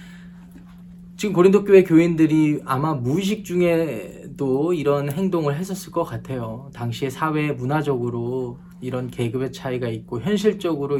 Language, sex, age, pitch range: Korean, male, 20-39, 135-175 Hz